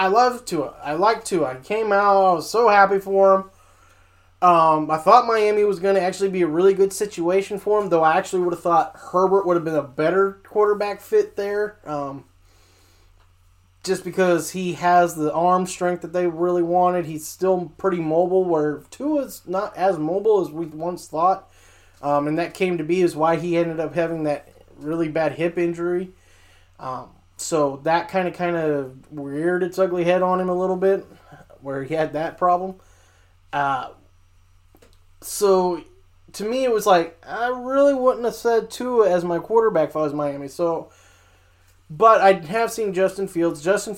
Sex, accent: male, American